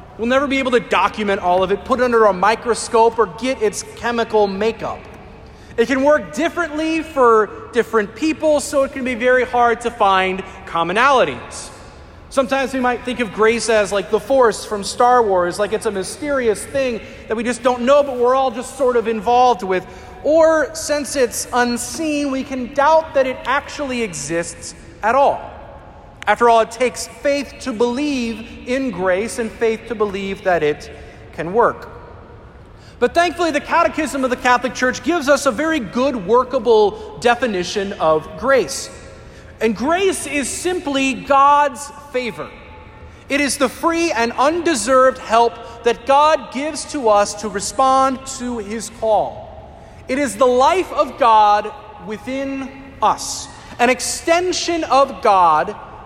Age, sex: 30-49, male